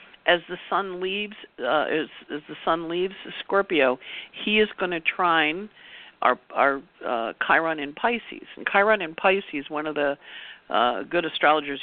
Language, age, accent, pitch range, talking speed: English, 50-69, American, 135-175 Hz, 165 wpm